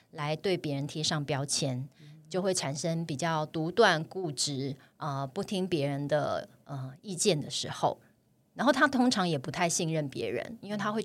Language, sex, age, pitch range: Chinese, female, 30-49, 150-190 Hz